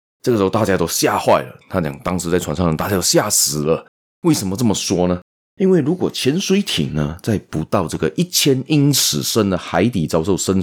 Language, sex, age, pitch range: Chinese, male, 30-49, 85-125 Hz